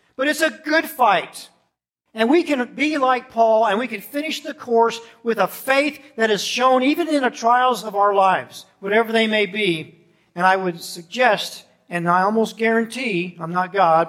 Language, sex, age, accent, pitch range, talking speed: English, male, 50-69, American, 135-215 Hz, 190 wpm